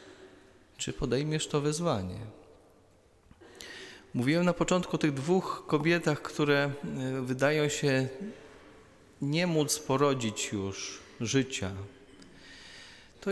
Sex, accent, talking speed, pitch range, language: male, native, 90 wpm, 100-145 Hz, Polish